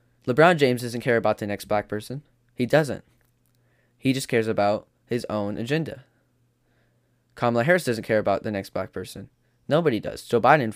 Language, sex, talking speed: English, male, 175 wpm